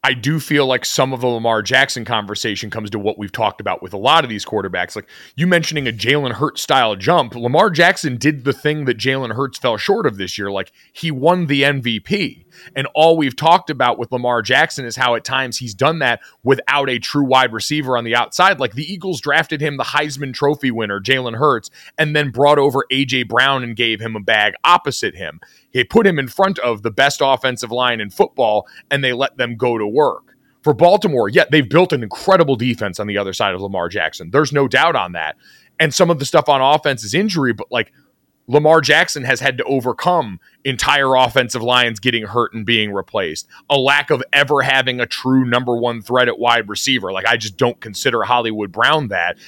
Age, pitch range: 30-49, 120-145 Hz